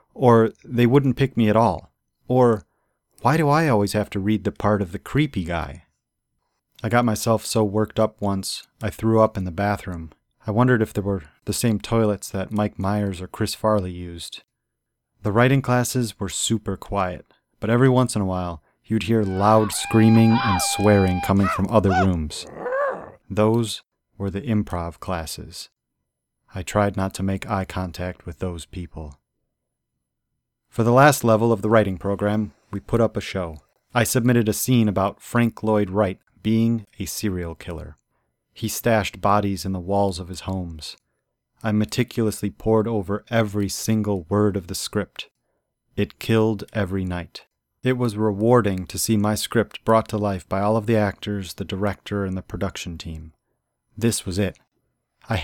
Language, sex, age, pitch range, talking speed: English, male, 40-59, 95-110 Hz, 170 wpm